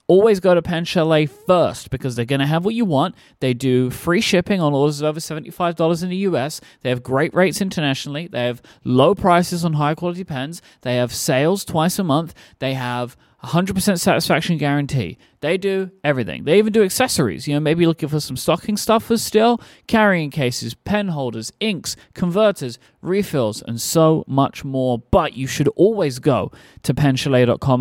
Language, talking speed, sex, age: English, 175 wpm, male, 30-49